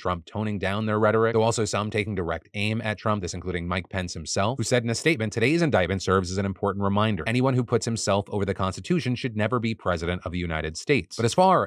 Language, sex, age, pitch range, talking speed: English, male, 30-49, 95-120 Hz, 245 wpm